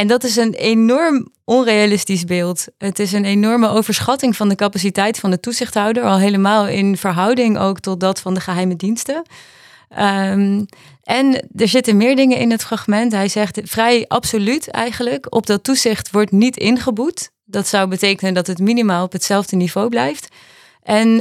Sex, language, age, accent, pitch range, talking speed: female, Dutch, 30-49, Dutch, 185-225 Hz, 165 wpm